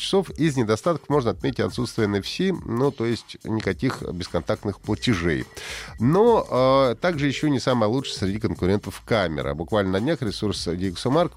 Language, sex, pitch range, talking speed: Russian, male, 100-145 Hz, 150 wpm